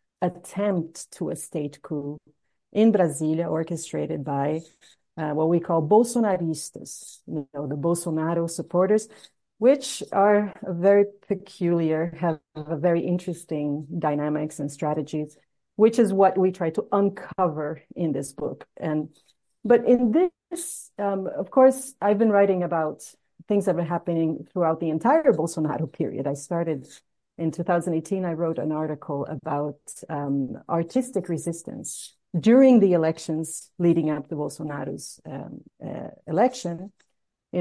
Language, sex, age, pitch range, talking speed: English, female, 40-59, 155-190 Hz, 130 wpm